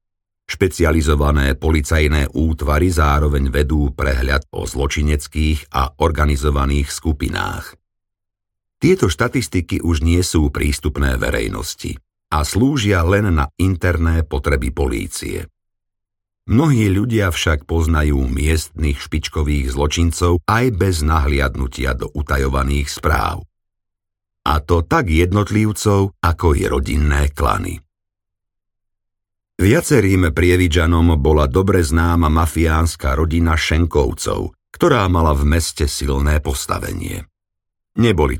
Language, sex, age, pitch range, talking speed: Slovak, male, 50-69, 75-95 Hz, 95 wpm